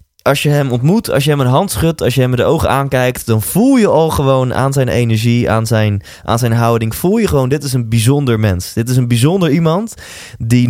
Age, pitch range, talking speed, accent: 20-39, 105-145 Hz, 235 wpm, Dutch